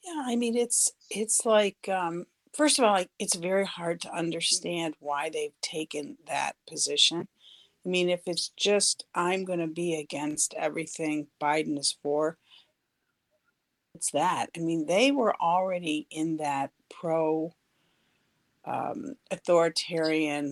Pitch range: 150-185 Hz